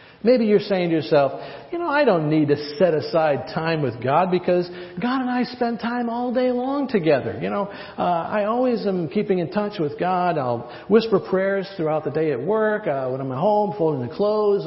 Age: 50-69